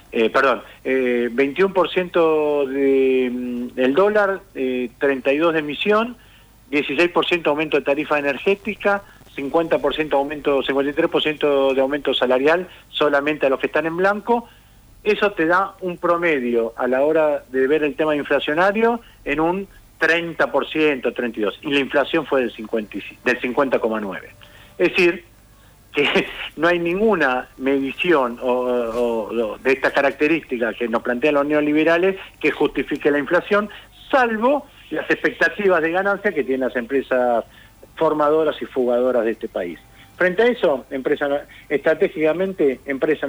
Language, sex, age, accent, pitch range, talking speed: Spanish, male, 40-59, Argentinian, 125-165 Hz, 135 wpm